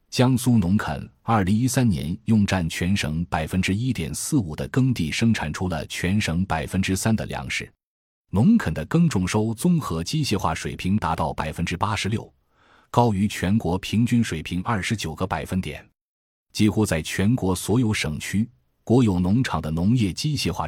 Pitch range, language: 85-115 Hz, Chinese